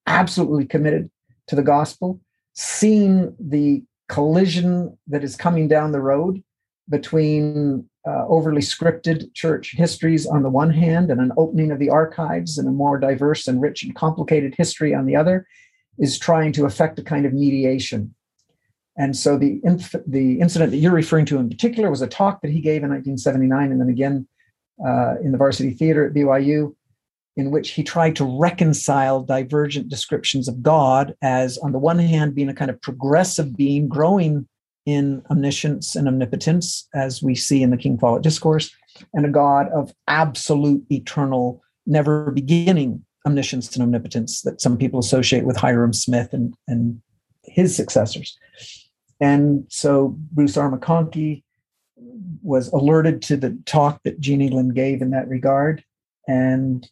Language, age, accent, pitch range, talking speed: English, 50-69, American, 130-160 Hz, 160 wpm